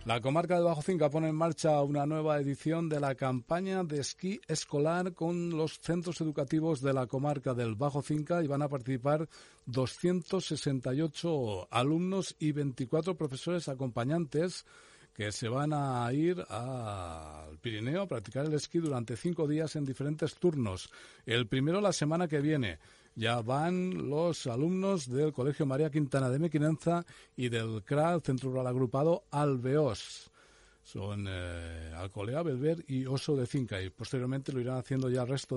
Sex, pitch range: male, 125-165 Hz